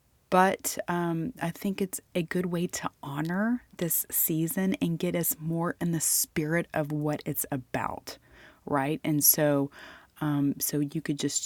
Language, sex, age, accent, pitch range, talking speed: English, female, 30-49, American, 145-175 Hz, 160 wpm